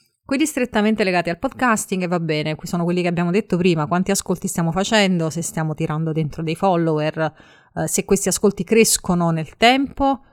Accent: native